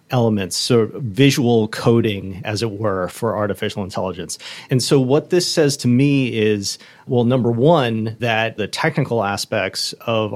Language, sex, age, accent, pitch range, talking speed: English, male, 30-49, American, 105-125 Hz, 150 wpm